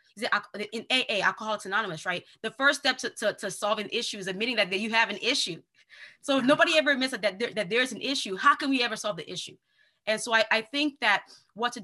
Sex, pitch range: female, 200-260 Hz